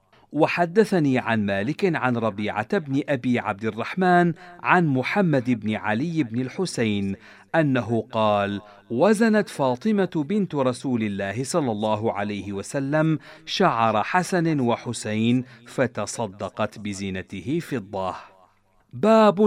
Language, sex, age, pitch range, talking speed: Arabic, male, 50-69, 110-165 Hz, 105 wpm